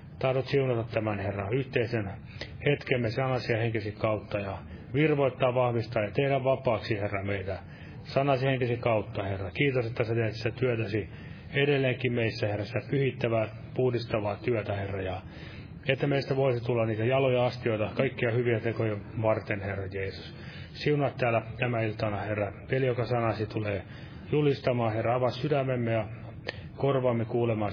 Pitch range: 105-125 Hz